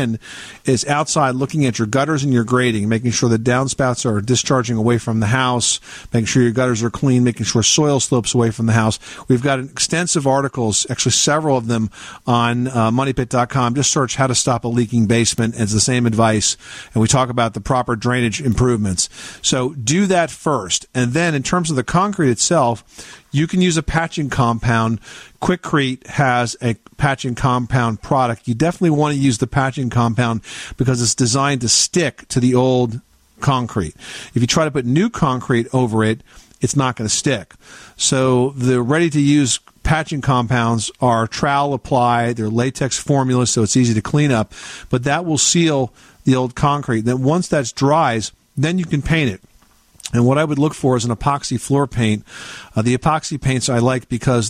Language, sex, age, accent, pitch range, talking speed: English, male, 50-69, American, 120-140 Hz, 190 wpm